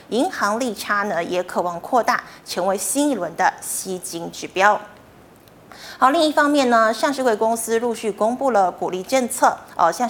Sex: female